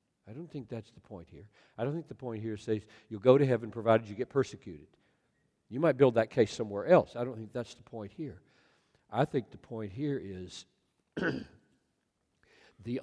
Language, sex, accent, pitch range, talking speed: English, male, American, 100-130 Hz, 200 wpm